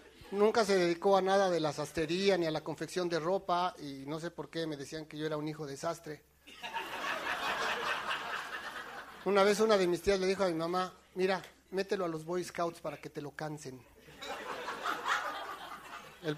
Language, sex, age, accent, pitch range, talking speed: Spanish, male, 40-59, Mexican, 160-190 Hz, 185 wpm